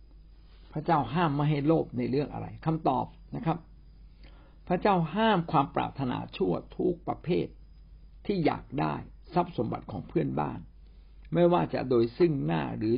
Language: Thai